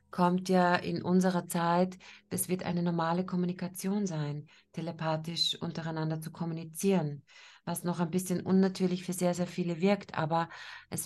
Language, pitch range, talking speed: German, 165-185 Hz, 145 wpm